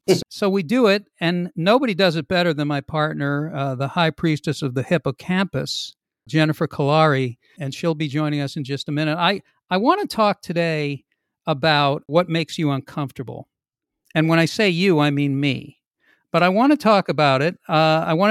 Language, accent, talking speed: English, American, 190 wpm